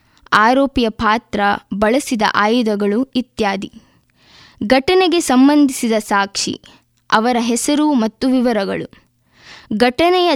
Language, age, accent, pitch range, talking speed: Kannada, 20-39, native, 215-275 Hz, 75 wpm